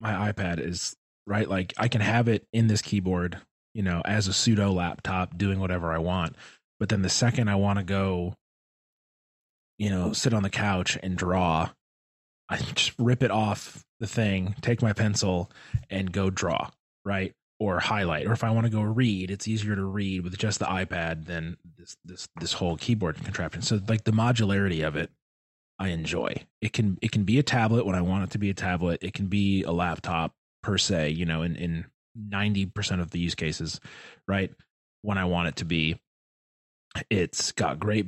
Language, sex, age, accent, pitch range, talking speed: English, male, 20-39, American, 85-110 Hz, 195 wpm